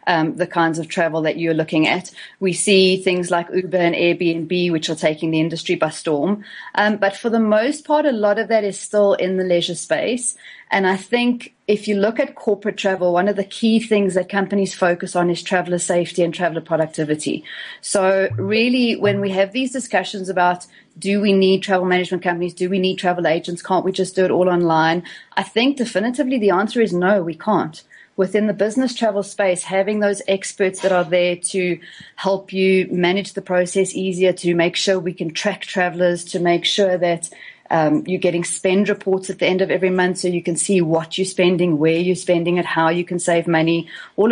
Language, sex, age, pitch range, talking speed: English, female, 30-49, 170-200 Hz, 210 wpm